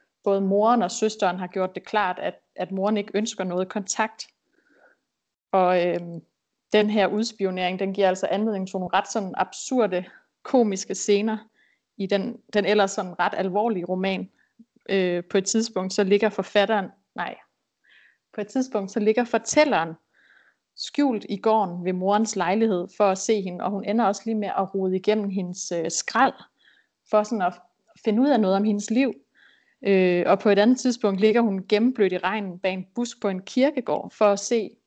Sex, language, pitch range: female, Danish, 185-220 Hz